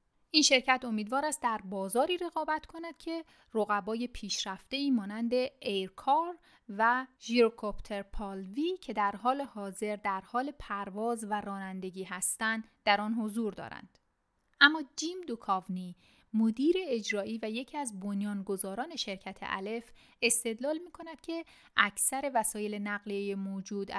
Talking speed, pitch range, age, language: 125 wpm, 200-260 Hz, 30-49, Persian